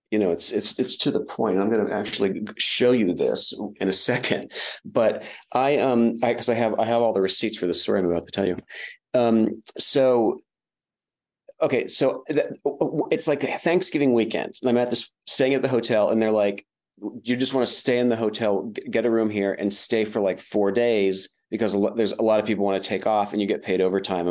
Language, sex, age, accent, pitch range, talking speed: English, male, 30-49, American, 95-120 Hz, 235 wpm